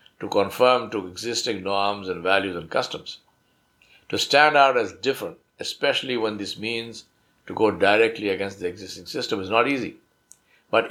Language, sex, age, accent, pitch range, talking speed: English, male, 60-79, Indian, 100-130 Hz, 160 wpm